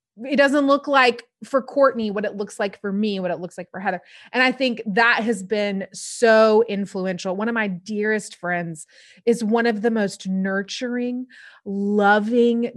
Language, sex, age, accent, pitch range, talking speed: English, female, 20-39, American, 200-250 Hz, 180 wpm